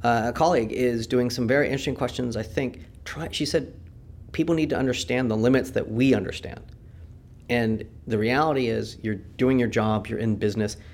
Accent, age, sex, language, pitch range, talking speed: American, 30-49, male, Danish, 110-135 Hz, 185 wpm